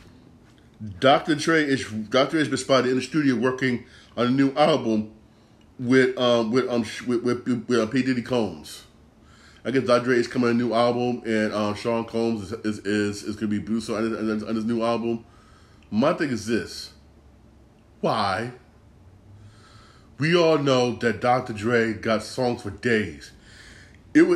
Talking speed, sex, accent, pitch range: 180 wpm, male, American, 110-135 Hz